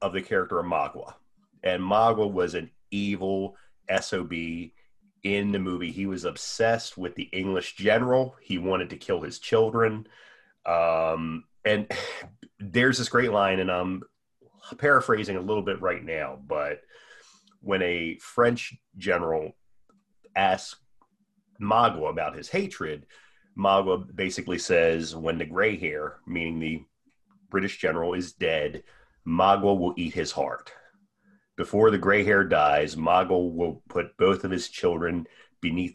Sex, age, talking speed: male, 30-49, 135 wpm